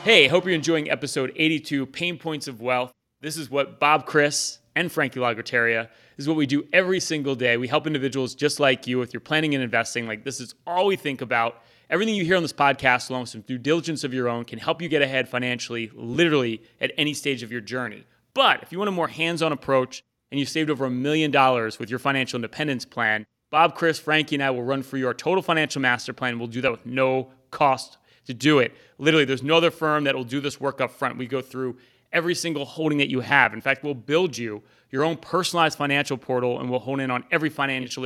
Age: 30-49